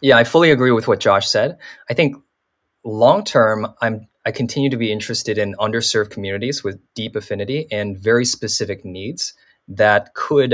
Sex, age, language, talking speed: male, 20-39, English, 170 wpm